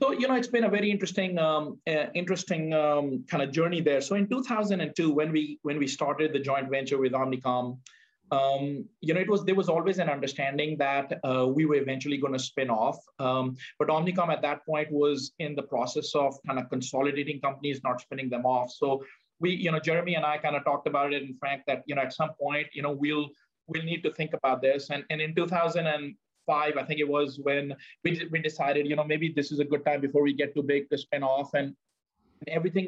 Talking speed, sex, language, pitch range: 235 wpm, male, English, 140-155 Hz